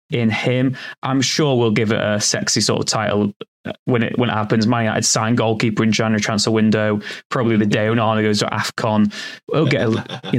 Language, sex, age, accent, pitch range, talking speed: English, male, 20-39, British, 105-120 Hz, 215 wpm